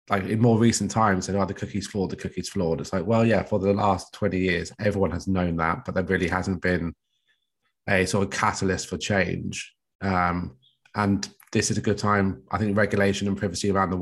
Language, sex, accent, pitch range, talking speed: English, male, British, 95-105 Hz, 225 wpm